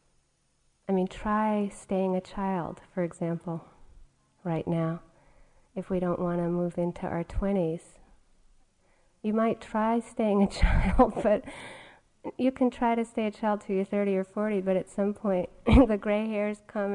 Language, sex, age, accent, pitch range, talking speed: English, female, 40-59, American, 175-205 Hz, 165 wpm